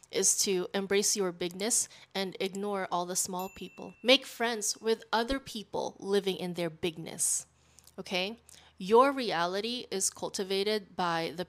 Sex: female